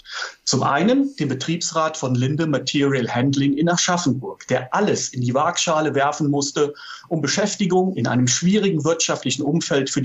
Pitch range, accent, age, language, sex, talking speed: 135-175 Hz, German, 40-59, German, male, 150 wpm